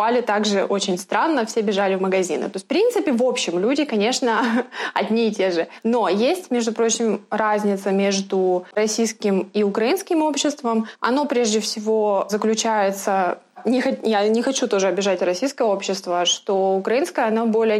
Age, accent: 20-39, native